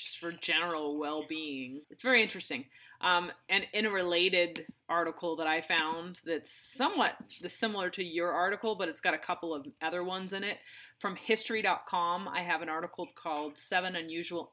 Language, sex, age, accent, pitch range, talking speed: English, female, 30-49, American, 155-180 Hz, 175 wpm